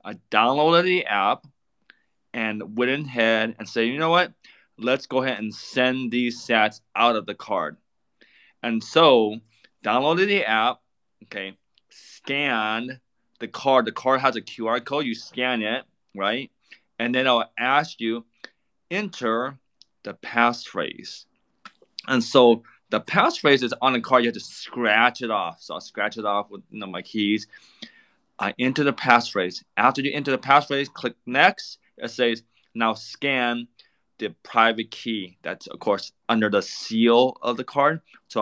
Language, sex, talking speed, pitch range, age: English, male, 160 wpm, 110-135 Hz, 20-39